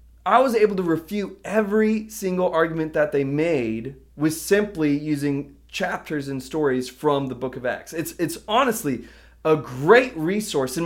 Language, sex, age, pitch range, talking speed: English, male, 20-39, 155-205 Hz, 160 wpm